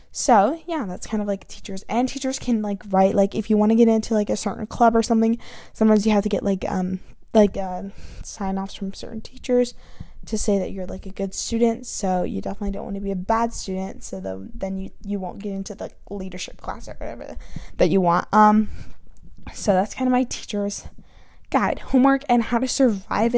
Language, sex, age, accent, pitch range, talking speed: English, female, 10-29, American, 200-235 Hz, 220 wpm